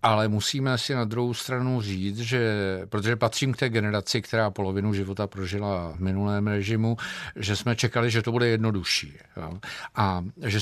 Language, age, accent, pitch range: Czech, 50-69, native, 100-125 Hz